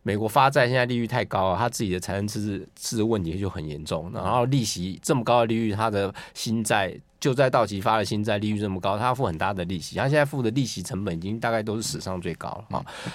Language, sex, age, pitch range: Chinese, male, 20-39, 100-135 Hz